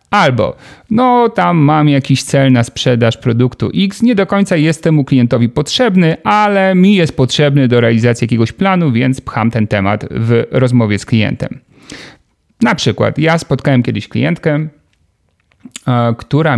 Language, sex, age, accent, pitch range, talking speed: Polish, male, 40-59, native, 120-155 Hz, 145 wpm